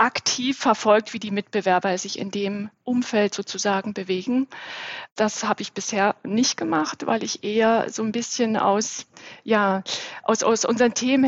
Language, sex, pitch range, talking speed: German, female, 200-240 Hz, 155 wpm